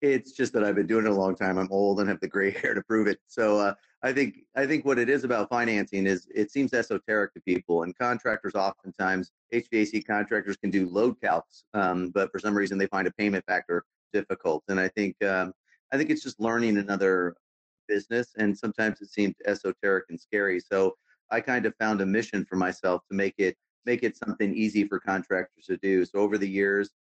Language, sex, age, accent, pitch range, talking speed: English, male, 30-49, American, 95-110 Hz, 220 wpm